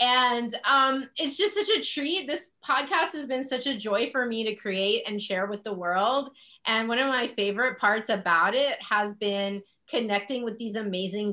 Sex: female